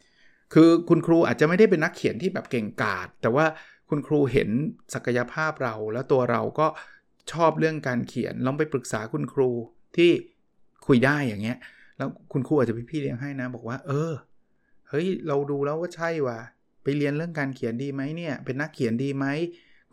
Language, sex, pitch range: Thai, male, 125-155 Hz